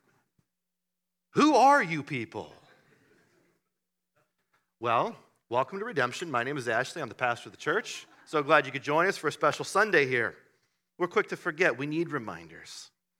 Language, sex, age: English, male, 40-59